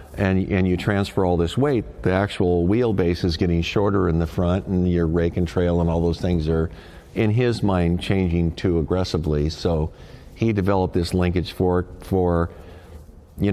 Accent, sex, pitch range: American, male, 85-105 Hz